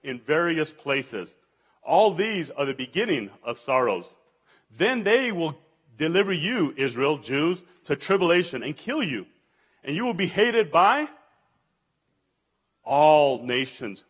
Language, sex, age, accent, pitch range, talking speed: English, male, 40-59, American, 130-185 Hz, 130 wpm